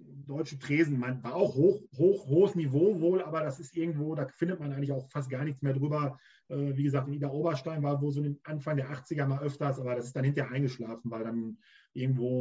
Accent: German